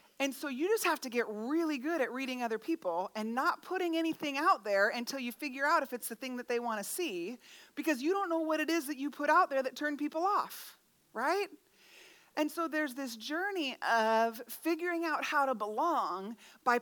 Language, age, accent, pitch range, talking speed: English, 30-49, American, 215-290 Hz, 220 wpm